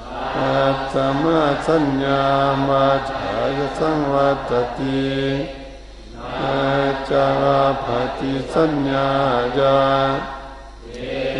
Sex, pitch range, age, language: male, 135-140 Hz, 50-69, Thai